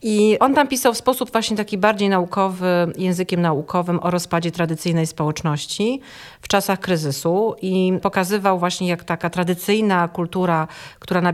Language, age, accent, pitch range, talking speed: Polish, 40-59, native, 170-205 Hz, 150 wpm